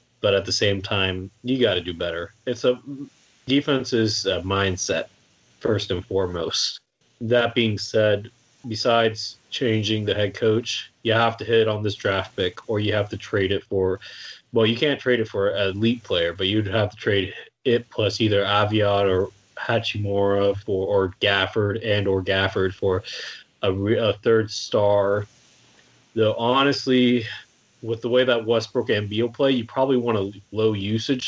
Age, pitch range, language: 20-39, 100-120 Hz, English